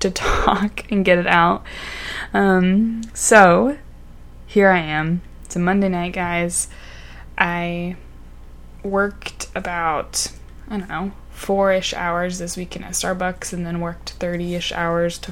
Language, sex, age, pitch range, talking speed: English, female, 20-39, 170-195 Hz, 135 wpm